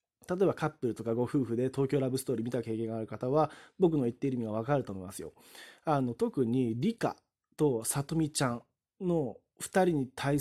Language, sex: Japanese, male